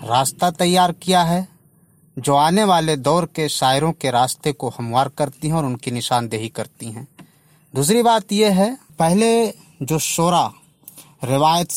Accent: native